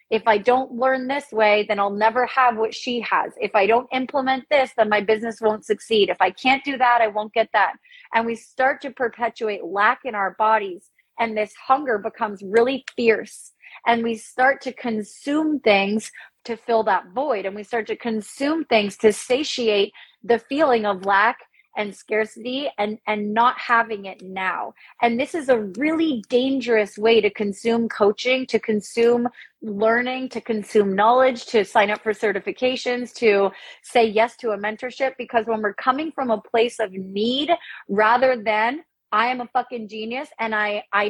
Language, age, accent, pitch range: English, 30-49, American, 210-245 Hz